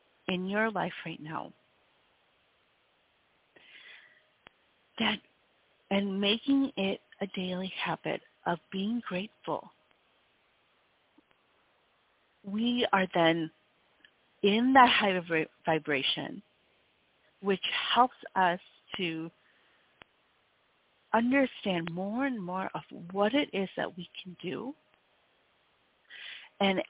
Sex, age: female, 40-59